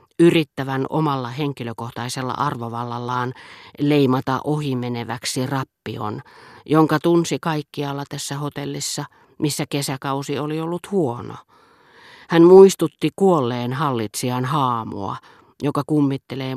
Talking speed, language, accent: 85 wpm, Finnish, native